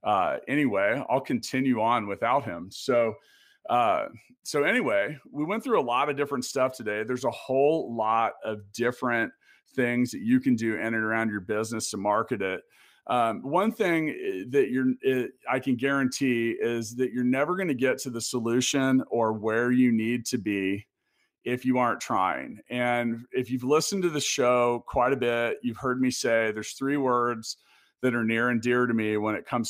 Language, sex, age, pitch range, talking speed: English, male, 40-59, 115-130 Hz, 190 wpm